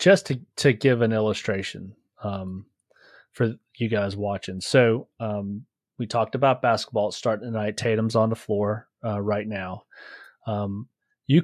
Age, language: 30-49, English